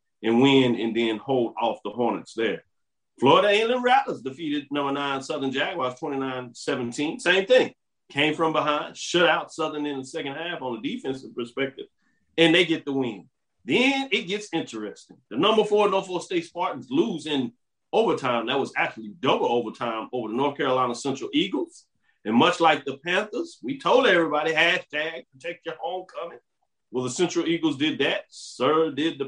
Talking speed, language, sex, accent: 170 wpm, English, male, American